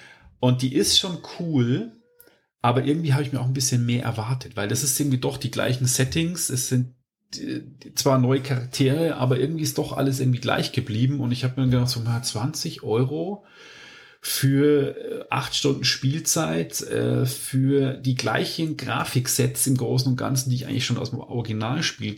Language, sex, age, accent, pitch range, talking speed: German, male, 40-59, German, 110-135 Hz, 175 wpm